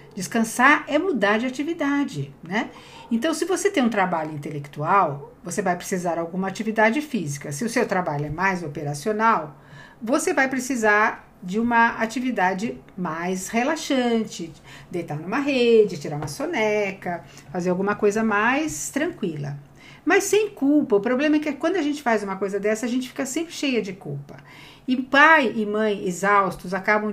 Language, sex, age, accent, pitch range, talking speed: Portuguese, female, 50-69, Brazilian, 185-250 Hz, 160 wpm